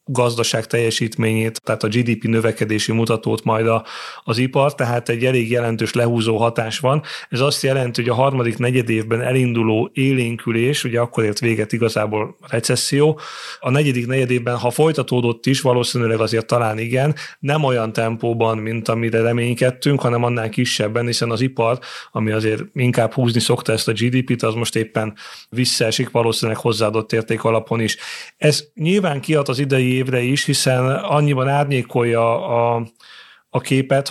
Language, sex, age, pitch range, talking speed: Hungarian, male, 30-49, 115-130 Hz, 155 wpm